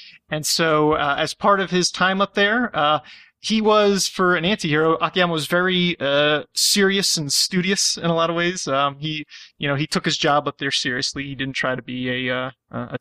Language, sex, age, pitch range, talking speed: English, male, 30-49, 145-185 Hz, 215 wpm